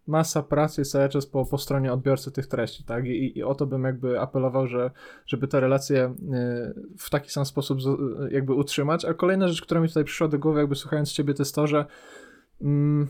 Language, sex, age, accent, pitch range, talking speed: Polish, male, 20-39, native, 135-150 Hz, 210 wpm